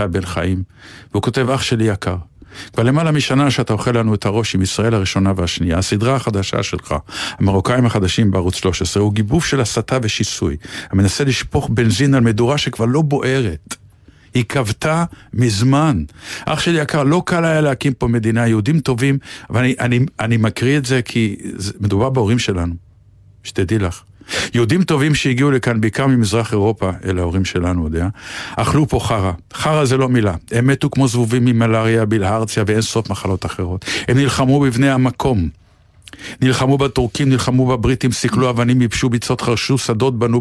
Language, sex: Hebrew, male